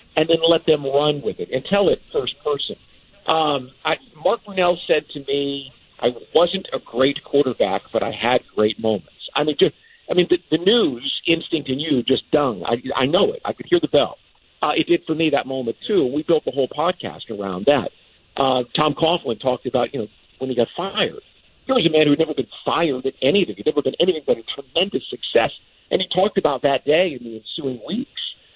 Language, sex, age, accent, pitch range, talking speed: English, male, 50-69, American, 135-190 Hz, 225 wpm